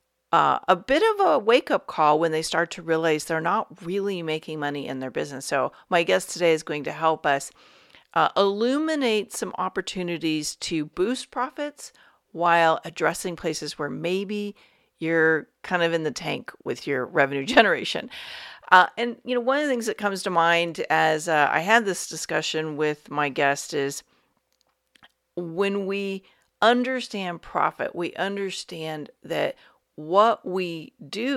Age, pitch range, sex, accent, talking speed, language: 40-59, 160-205 Hz, female, American, 160 wpm, English